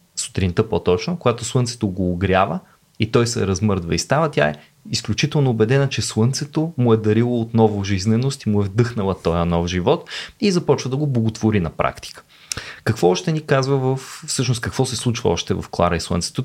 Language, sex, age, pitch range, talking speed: Bulgarian, male, 20-39, 95-135 Hz, 185 wpm